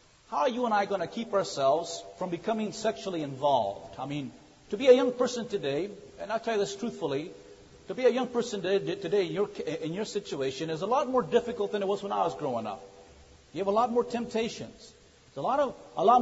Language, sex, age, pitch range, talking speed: English, male, 50-69, 195-245 Hz, 225 wpm